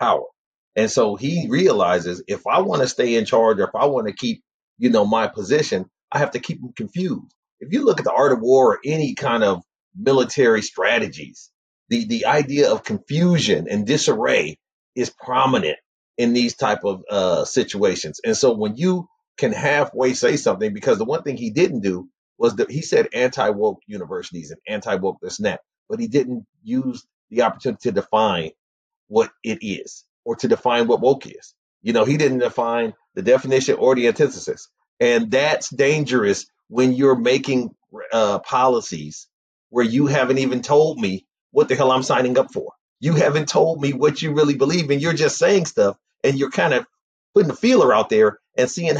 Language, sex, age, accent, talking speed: English, male, 30-49, American, 185 wpm